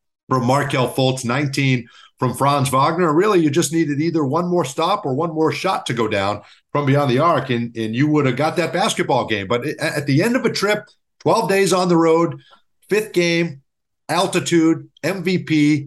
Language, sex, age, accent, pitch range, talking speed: English, male, 50-69, American, 120-155 Hz, 195 wpm